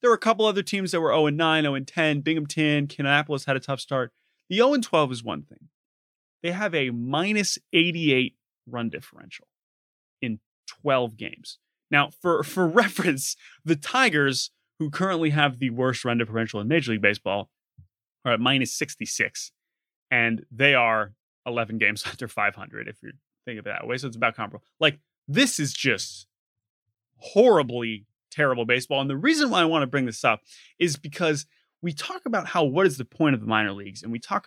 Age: 30-49